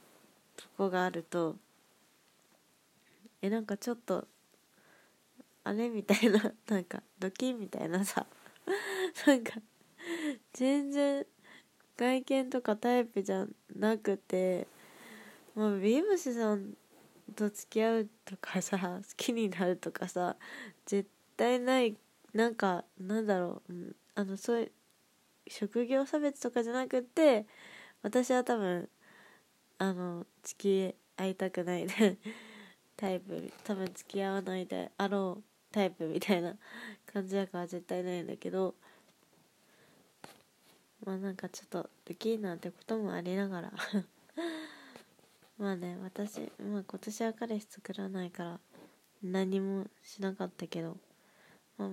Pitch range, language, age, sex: 185-230 Hz, Japanese, 20-39, female